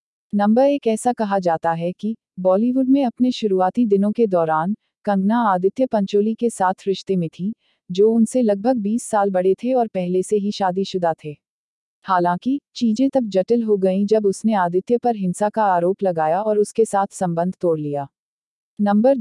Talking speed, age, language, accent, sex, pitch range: 175 wpm, 40-59, Hindi, native, female, 180-225 Hz